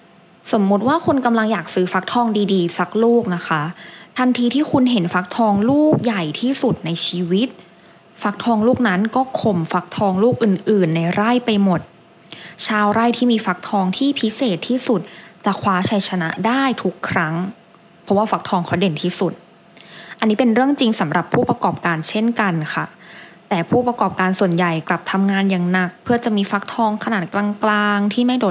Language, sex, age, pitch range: English, female, 20-39, 175-230 Hz